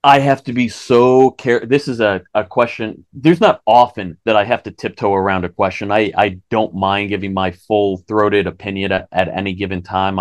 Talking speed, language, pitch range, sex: 205 wpm, English, 95-115 Hz, male